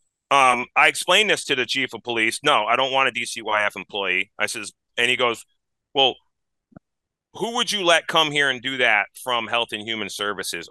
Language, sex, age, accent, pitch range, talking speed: English, male, 30-49, American, 105-135 Hz, 200 wpm